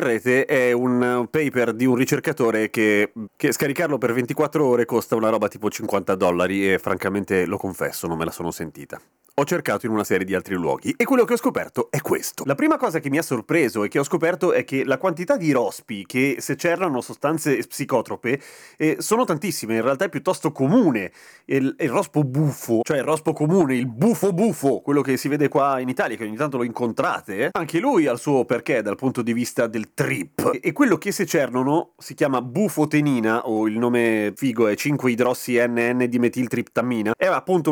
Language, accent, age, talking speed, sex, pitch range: Italian, native, 30-49, 200 wpm, male, 120-165 Hz